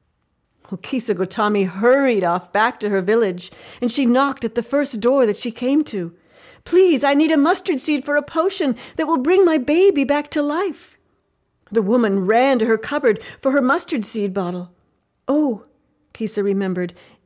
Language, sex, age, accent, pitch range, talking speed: English, female, 50-69, American, 195-280 Hz, 175 wpm